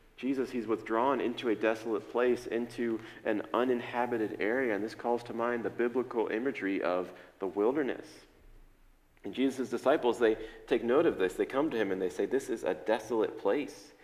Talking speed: 180 wpm